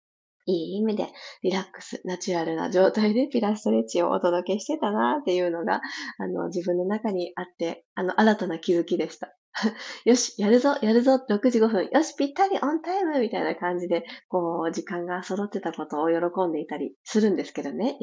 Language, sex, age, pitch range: Japanese, female, 20-39, 185-245 Hz